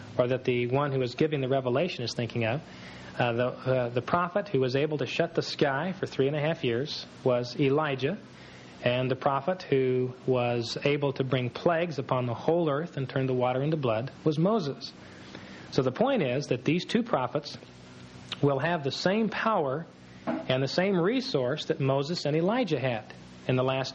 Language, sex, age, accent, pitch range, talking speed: English, male, 40-59, American, 120-155 Hz, 195 wpm